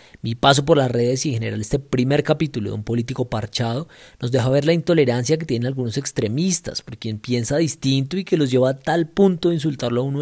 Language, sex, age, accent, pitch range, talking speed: Spanish, male, 30-49, Colombian, 115-145 Hz, 230 wpm